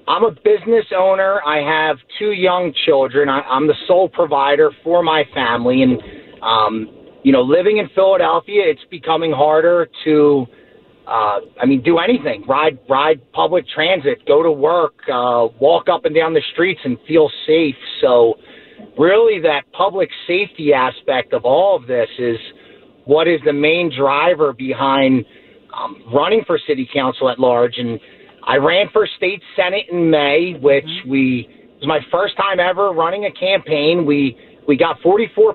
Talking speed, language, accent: 165 wpm, English, American